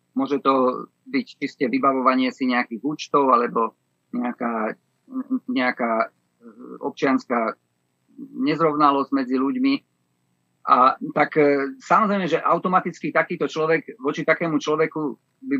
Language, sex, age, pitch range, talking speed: Slovak, male, 50-69, 135-170 Hz, 100 wpm